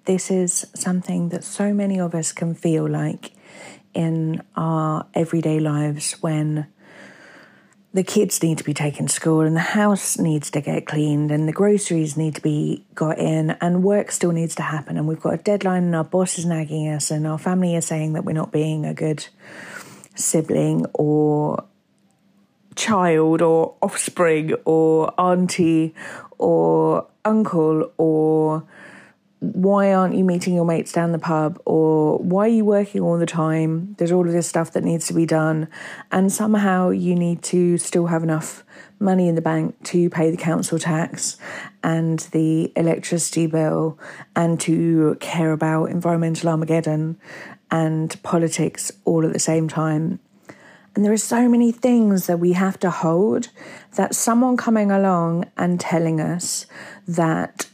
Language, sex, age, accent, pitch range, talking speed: English, female, 40-59, British, 160-195 Hz, 165 wpm